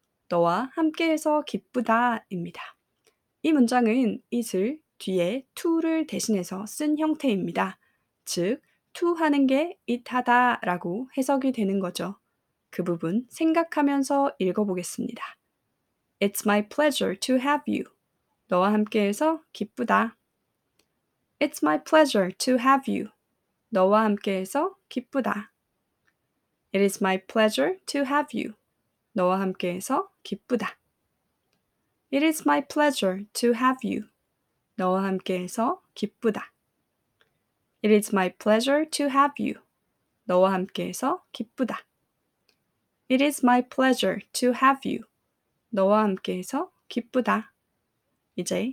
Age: 20-39